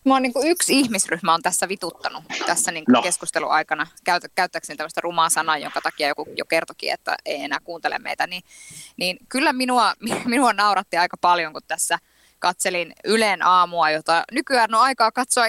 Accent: native